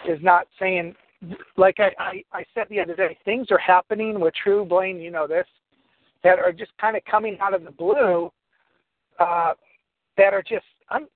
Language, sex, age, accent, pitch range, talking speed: English, male, 50-69, American, 170-195 Hz, 185 wpm